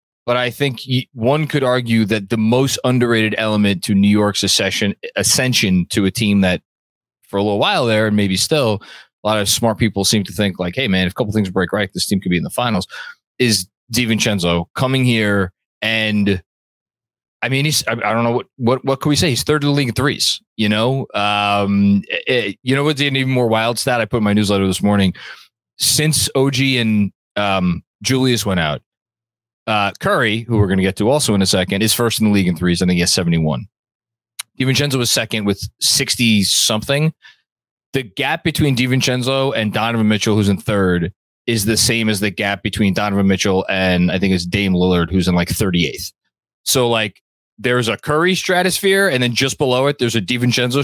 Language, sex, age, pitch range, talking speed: English, male, 20-39, 100-130 Hz, 205 wpm